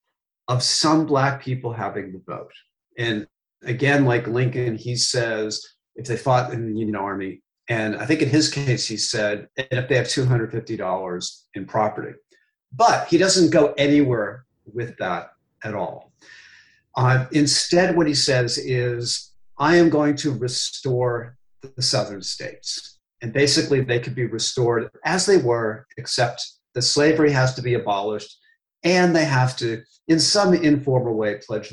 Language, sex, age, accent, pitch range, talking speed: English, male, 50-69, American, 115-150 Hz, 155 wpm